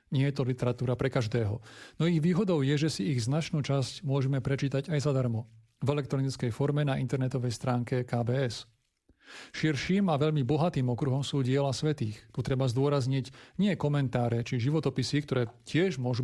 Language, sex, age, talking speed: Slovak, male, 40-59, 165 wpm